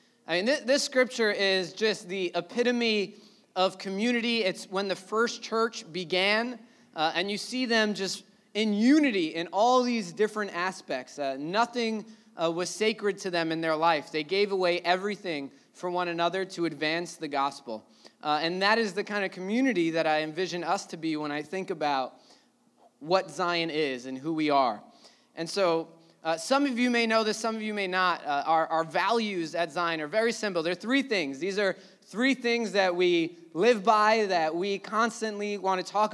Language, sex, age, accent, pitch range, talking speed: English, male, 20-39, American, 175-225 Hz, 195 wpm